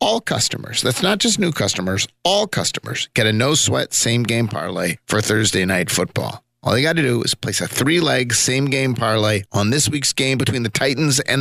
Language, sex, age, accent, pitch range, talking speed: English, male, 40-59, American, 115-150 Hz, 195 wpm